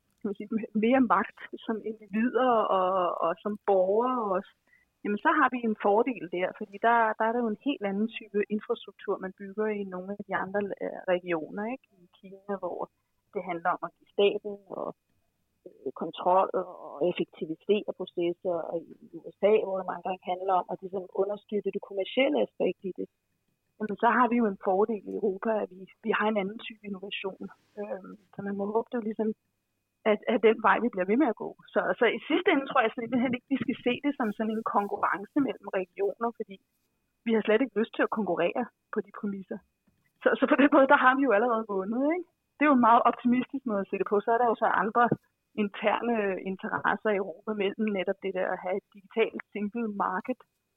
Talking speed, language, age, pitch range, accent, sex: 205 wpm, Danish, 30-49, 190-230 Hz, native, female